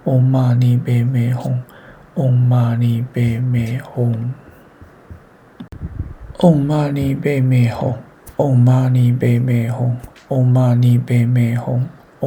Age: 60-79